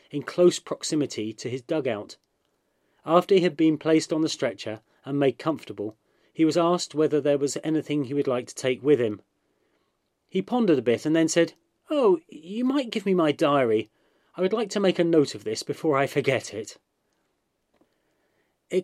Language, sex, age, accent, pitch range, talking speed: English, male, 30-49, British, 120-170 Hz, 190 wpm